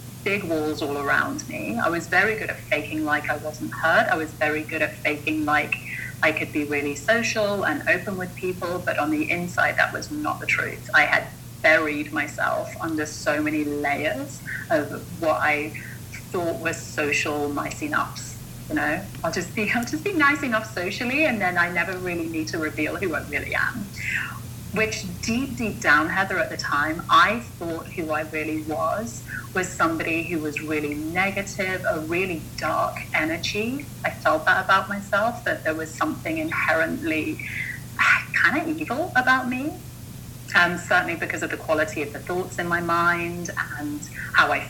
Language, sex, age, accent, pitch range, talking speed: English, female, 30-49, British, 150-185 Hz, 175 wpm